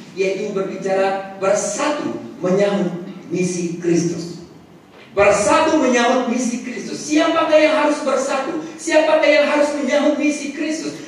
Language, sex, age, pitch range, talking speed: Malay, male, 40-59, 210-295 Hz, 110 wpm